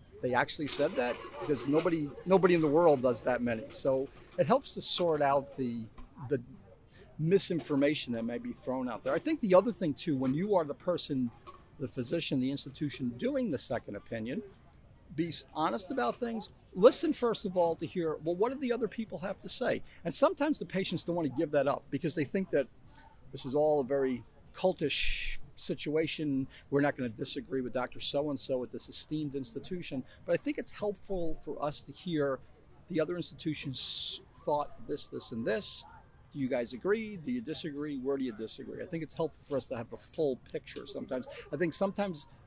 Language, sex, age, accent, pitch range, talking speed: English, male, 40-59, American, 130-175 Hz, 200 wpm